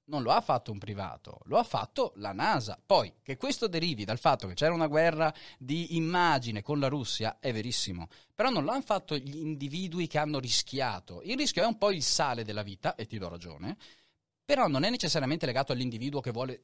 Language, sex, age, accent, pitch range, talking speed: Italian, male, 30-49, native, 110-170 Hz, 215 wpm